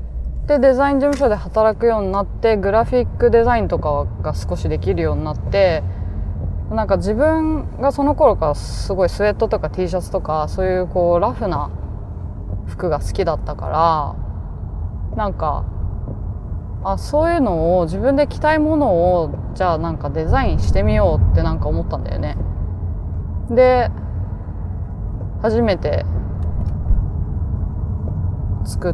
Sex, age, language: female, 20-39, Japanese